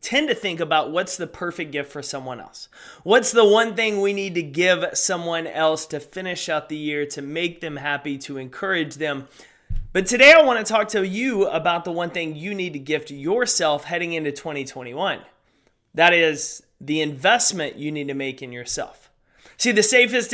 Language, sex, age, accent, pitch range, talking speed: English, male, 30-49, American, 150-180 Hz, 195 wpm